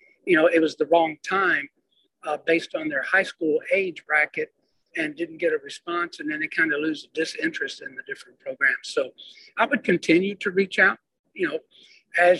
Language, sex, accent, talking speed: English, male, American, 200 wpm